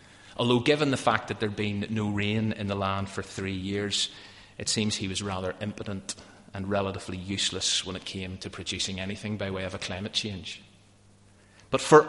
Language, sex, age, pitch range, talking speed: English, male, 40-59, 100-135 Hz, 190 wpm